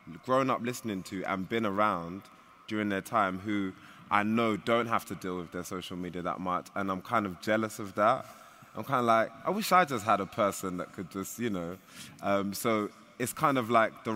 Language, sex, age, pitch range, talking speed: English, male, 20-39, 95-115 Hz, 225 wpm